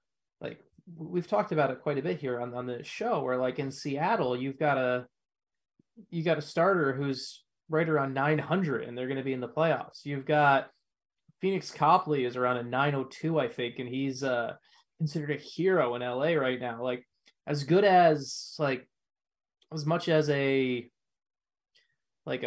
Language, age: English, 20-39